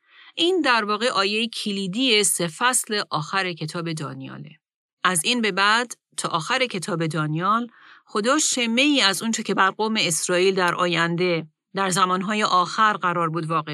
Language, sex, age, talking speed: Persian, female, 40-59, 145 wpm